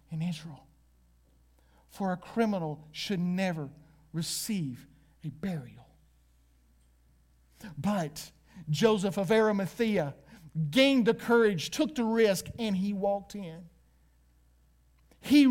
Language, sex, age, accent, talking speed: English, male, 50-69, American, 95 wpm